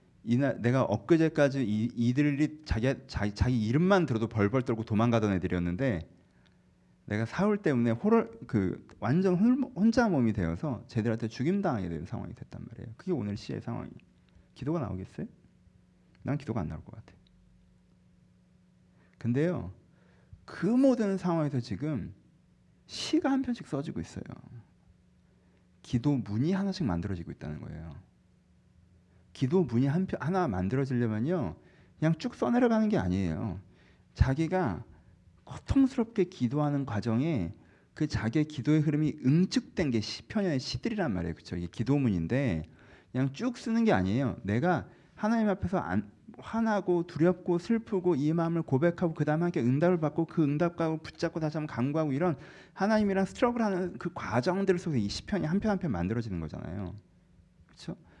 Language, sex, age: Korean, male, 40-59